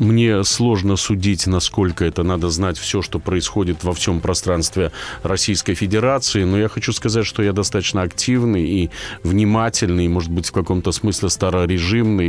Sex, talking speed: male, 155 wpm